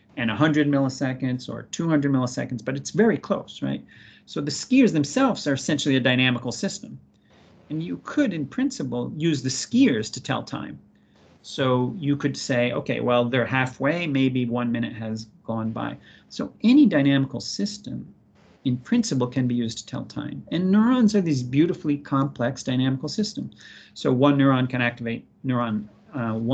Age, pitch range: 40-59, 120-145 Hz